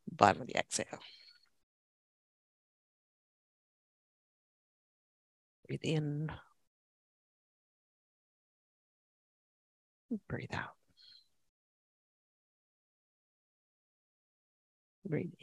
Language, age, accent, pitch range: English, 40-59, American, 135-180 Hz